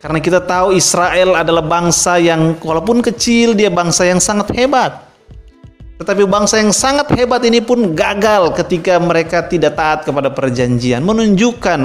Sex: male